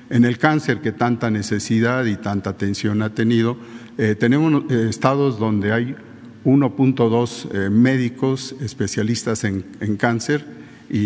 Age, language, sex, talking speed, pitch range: 50-69, Spanish, male, 115 wpm, 105-120 Hz